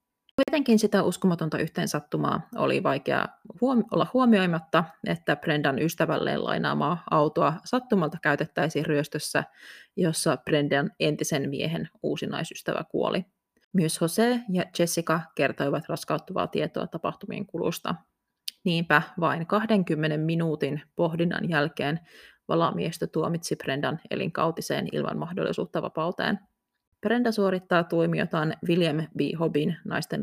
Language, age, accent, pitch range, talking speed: Finnish, 30-49, native, 160-210 Hz, 100 wpm